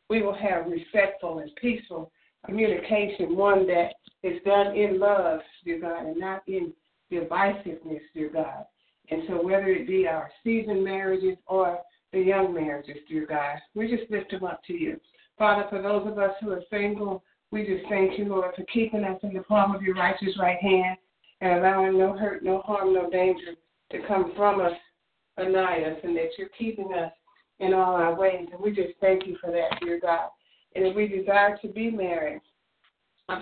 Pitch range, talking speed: 175-205 Hz, 190 wpm